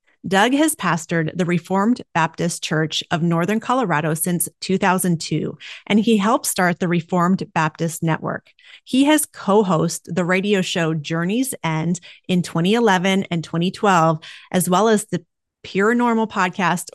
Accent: American